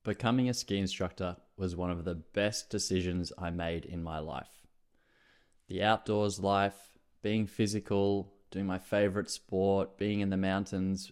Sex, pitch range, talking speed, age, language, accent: male, 90-110 Hz, 150 wpm, 20-39, English, Australian